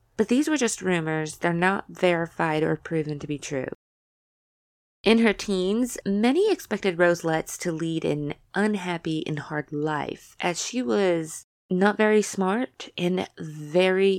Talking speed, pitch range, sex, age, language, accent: 150 wpm, 160-210 Hz, female, 20-39, English, American